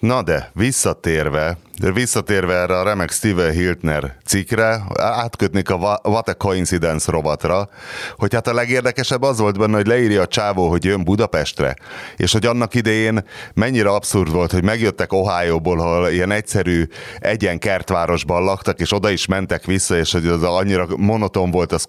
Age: 30-49